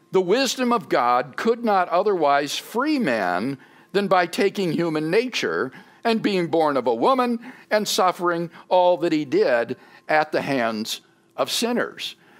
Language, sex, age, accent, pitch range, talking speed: English, male, 60-79, American, 155-230 Hz, 150 wpm